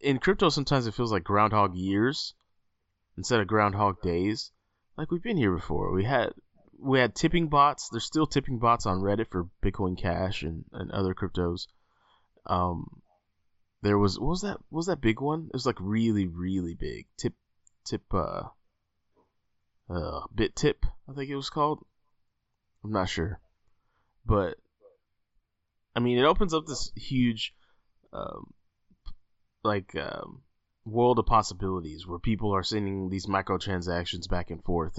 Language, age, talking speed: English, 20-39, 155 wpm